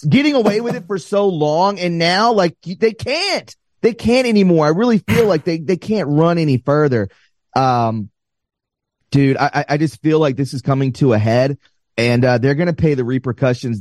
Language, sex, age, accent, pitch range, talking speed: English, male, 30-49, American, 125-170 Hz, 195 wpm